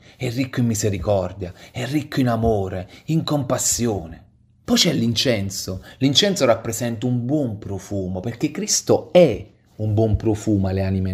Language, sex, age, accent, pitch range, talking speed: Italian, male, 40-59, native, 100-125 Hz, 140 wpm